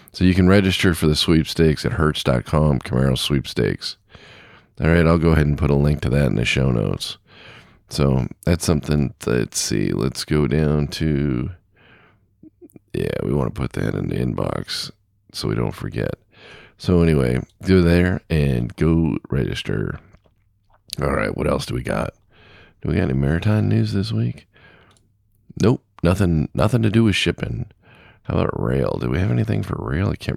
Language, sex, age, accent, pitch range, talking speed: English, male, 40-59, American, 70-95 Hz, 175 wpm